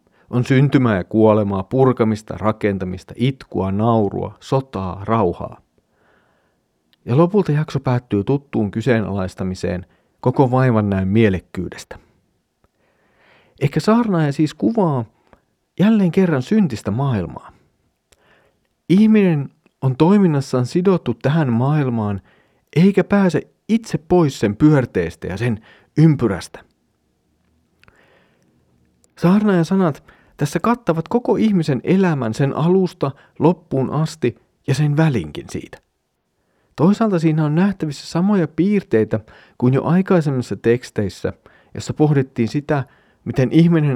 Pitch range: 110-165 Hz